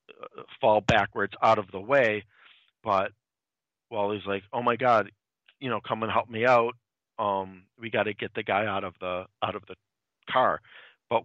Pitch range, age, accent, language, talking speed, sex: 95-120 Hz, 40-59, American, English, 185 wpm, male